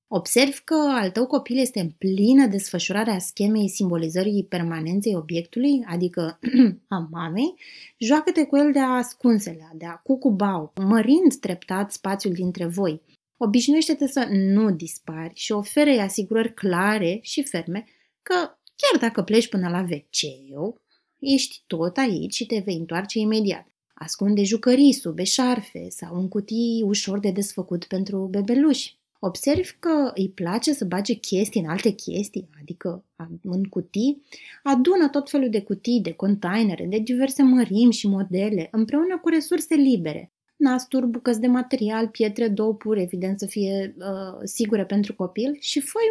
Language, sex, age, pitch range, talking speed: Romanian, female, 20-39, 190-265 Hz, 145 wpm